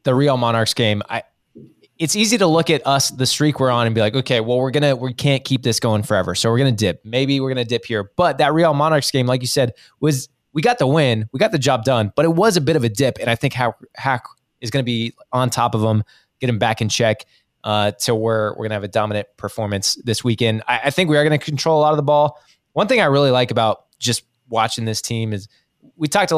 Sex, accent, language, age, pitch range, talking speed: male, American, English, 20-39, 115-145 Hz, 270 wpm